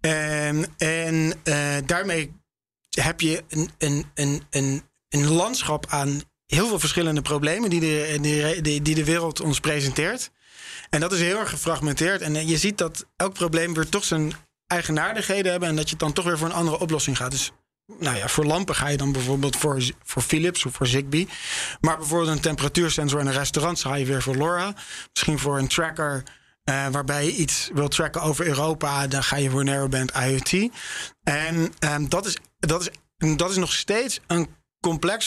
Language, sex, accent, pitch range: Dutch, male, Dutch, 145-170 Hz